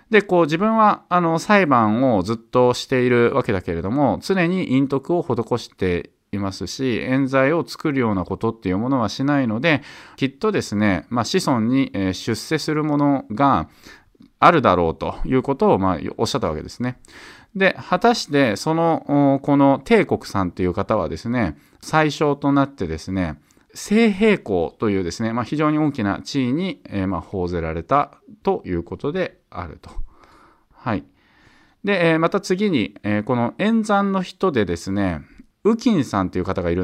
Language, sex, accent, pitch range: Japanese, male, native, 100-155 Hz